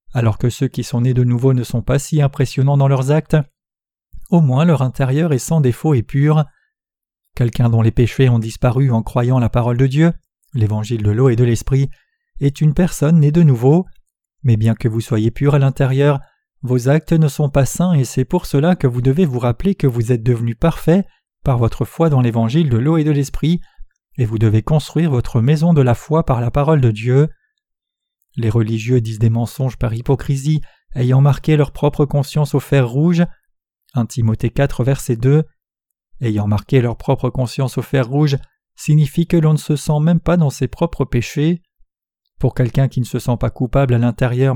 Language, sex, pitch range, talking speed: French, male, 125-155 Hz, 200 wpm